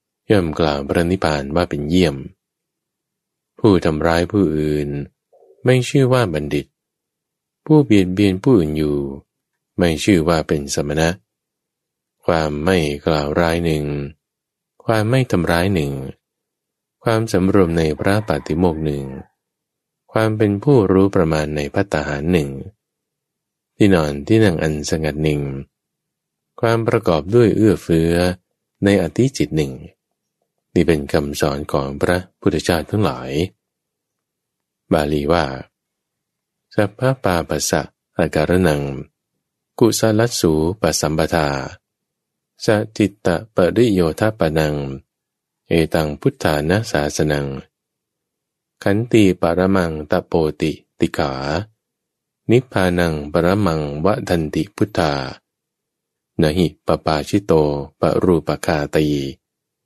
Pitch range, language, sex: 75-100 Hz, English, male